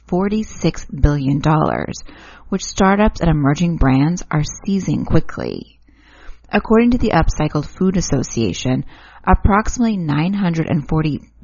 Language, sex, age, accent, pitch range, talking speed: English, female, 30-49, American, 145-195 Hz, 90 wpm